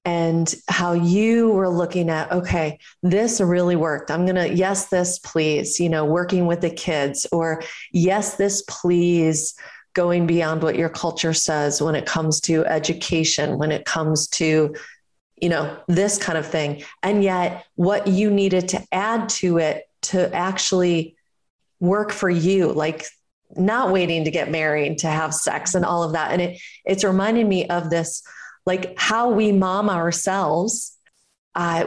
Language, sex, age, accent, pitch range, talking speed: English, female, 30-49, American, 160-185 Hz, 165 wpm